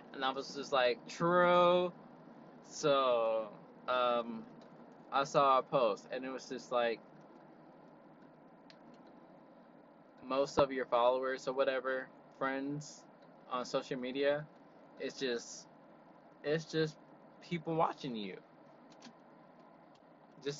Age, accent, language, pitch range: 20-39, American, English, 125-150 Hz